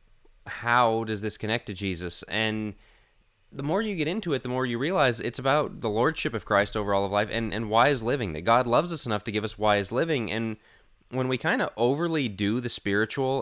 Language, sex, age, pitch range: English, male, 20-39, 100-125 Hz